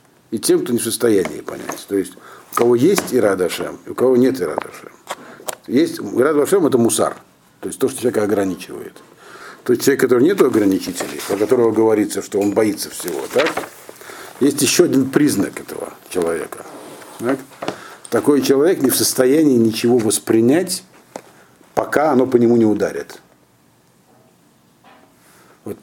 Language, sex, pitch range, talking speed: Russian, male, 110-155 Hz, 155 wpm